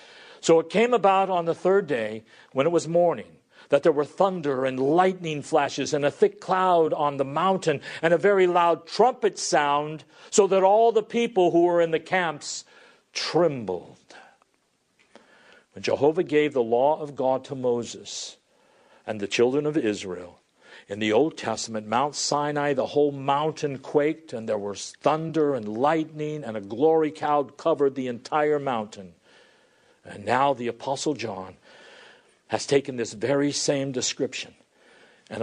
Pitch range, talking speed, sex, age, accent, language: 120-160 Hz, 160 wpm, male, 50-69, American, English